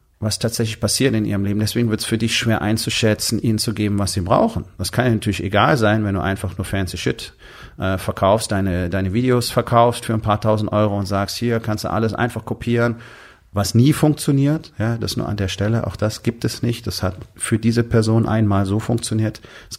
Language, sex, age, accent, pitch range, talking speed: German, male, 40-59, German, 100-120 Hz, 220 wpm